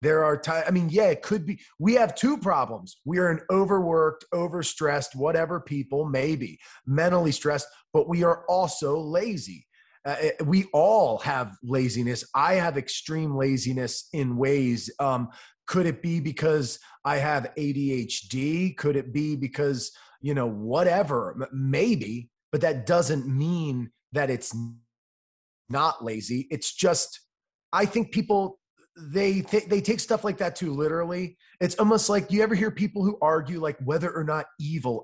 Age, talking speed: 30-49, 155 wpm